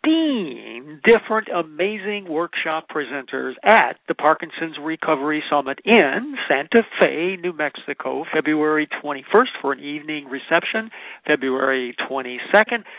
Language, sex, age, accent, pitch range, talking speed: English, male, 50-69, American, 140-190 Hz, 105 wpm